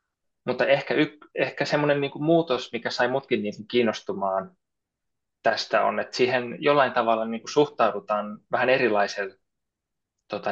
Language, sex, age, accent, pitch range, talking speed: Finnish, male, 20-39, native, 100-130 Hz, 135 wpm